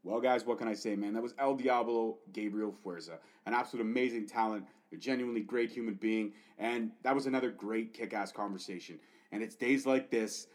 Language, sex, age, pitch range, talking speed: English, male, 30-49, 105-125 Hz, 195 wpm